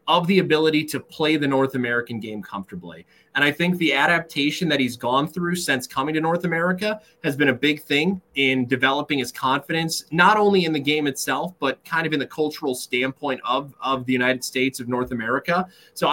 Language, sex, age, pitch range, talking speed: English, male, 30-49, 130-165 Hz, 205 wpm